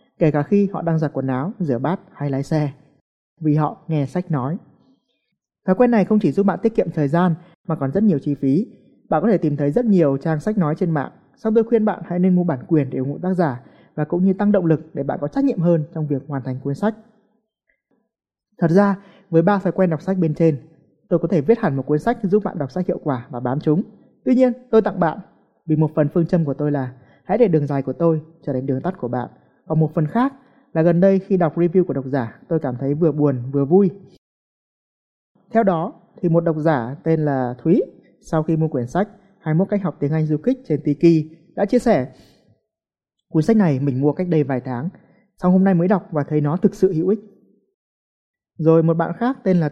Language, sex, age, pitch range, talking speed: Vietnamese, male, 20-39, 145-195 Hz, 245 wpm